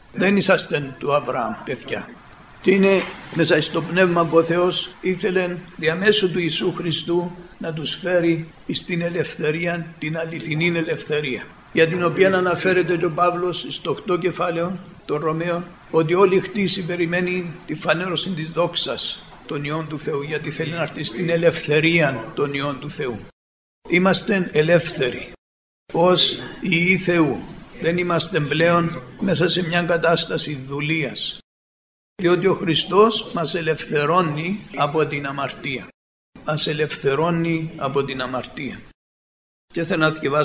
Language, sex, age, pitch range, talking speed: Greek, male, 60-79, 150-175 Hz, 130 wpm